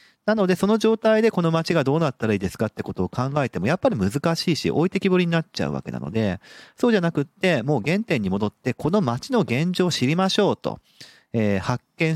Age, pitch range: 40-59, 105-170 Hz